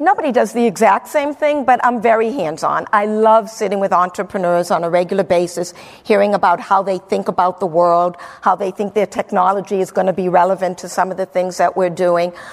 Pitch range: 195-235 Hz